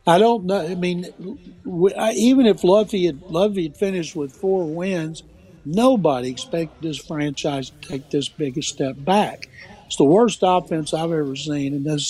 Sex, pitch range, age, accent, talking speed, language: male, 150-190 Hz, 60-79, American, 175 wpm, English